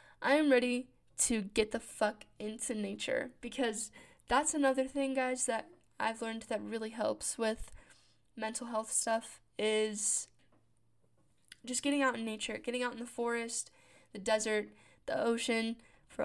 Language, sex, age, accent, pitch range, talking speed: English, female, 10-29, American, 210-250 Hz, 150 wpm